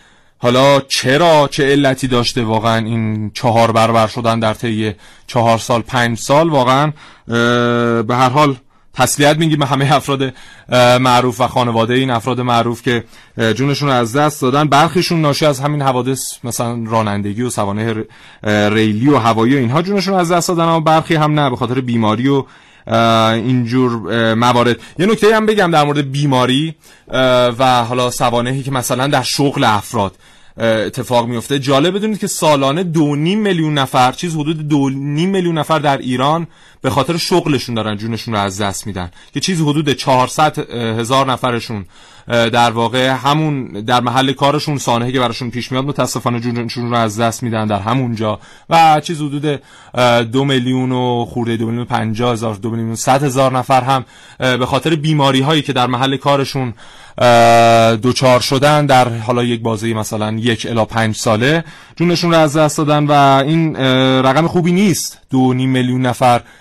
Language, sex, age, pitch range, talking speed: Persian, male, 30-49, 115-145 Hz, 165 wpm